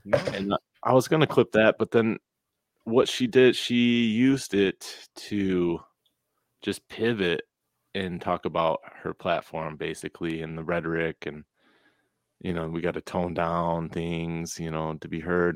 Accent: American